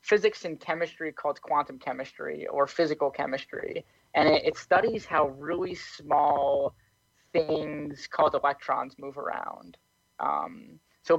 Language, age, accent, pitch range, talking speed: English, 20-39, American, 145-175 Hz, 120 wpm